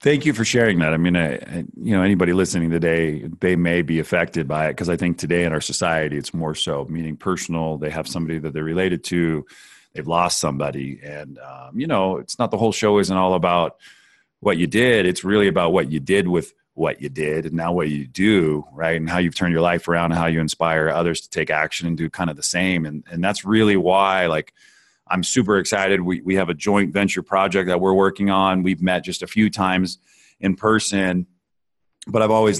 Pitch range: 85-100 Hz